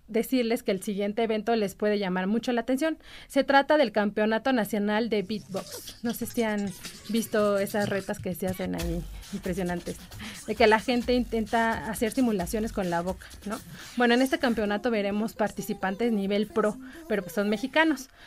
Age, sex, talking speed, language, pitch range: 30-49, female, 175 wpm, Spanish, 205-255 Hz